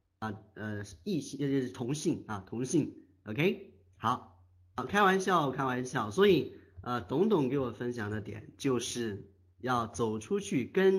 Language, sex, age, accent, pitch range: Chinese, male, 30-49, native, 110-150 Hz